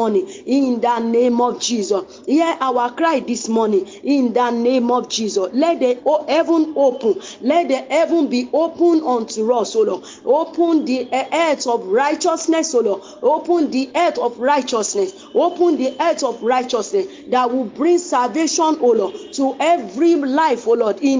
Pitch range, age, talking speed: 245-325 Hz, 40-59, 160 wpm